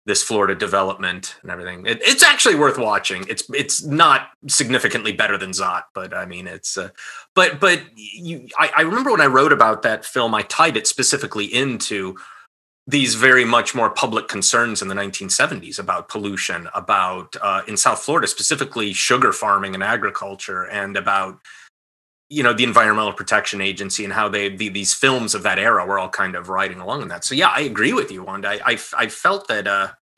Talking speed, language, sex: 195 wpm, English, male